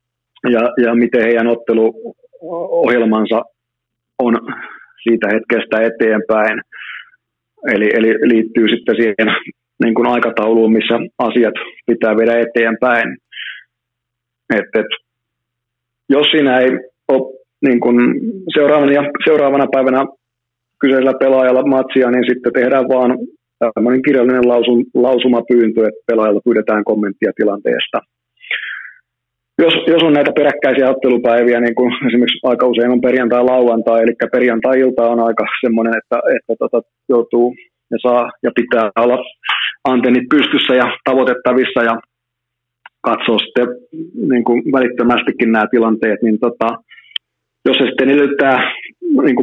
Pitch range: 115-130 Hz